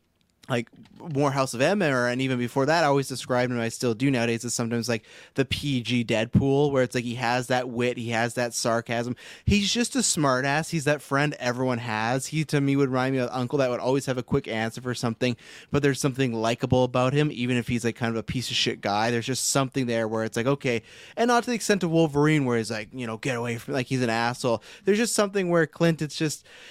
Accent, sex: American, male